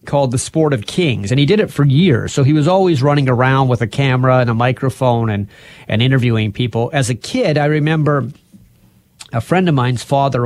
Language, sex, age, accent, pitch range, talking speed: English, male, 30-49, American, 125-165 Hz, 210 wpm